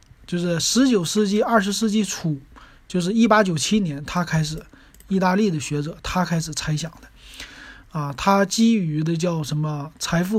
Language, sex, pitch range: Chinese, male, 160-210 Hz